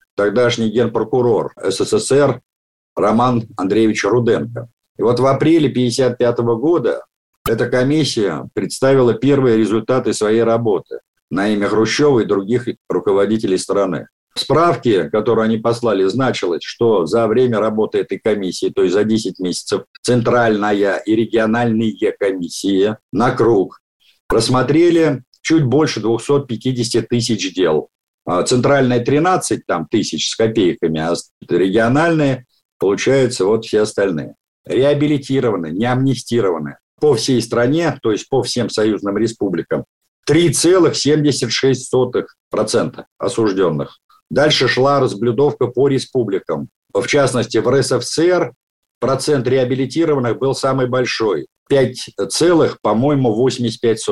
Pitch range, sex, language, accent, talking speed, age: 110-135 Hz, male, Russian, native, 110 wpm, 50-69